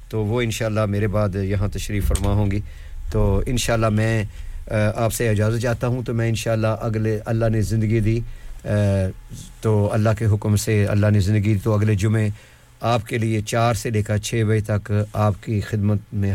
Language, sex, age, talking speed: English, male, 50-69, 185 wpm